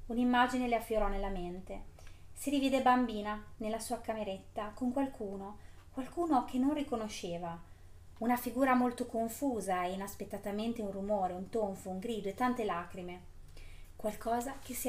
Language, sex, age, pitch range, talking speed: Italian, female, 30-49, 190-245 Hz, 140 wpm